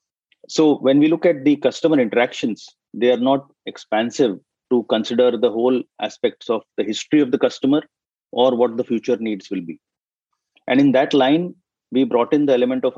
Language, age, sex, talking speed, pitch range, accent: English, 30-49, male, 185 wpm, 120-150 Hz, Indian